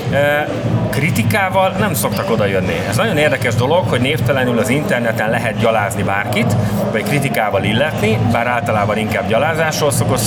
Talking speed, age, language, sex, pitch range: 140 wpm, 30-49, Hungarian, male, 115-145 Hz